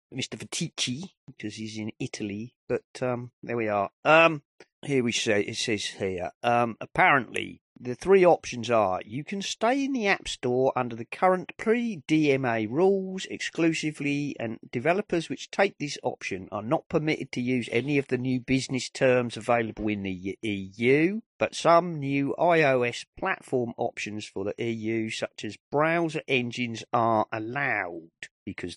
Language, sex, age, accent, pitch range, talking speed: English, male, 40-59, British, 110-160 Hz, 155 wpm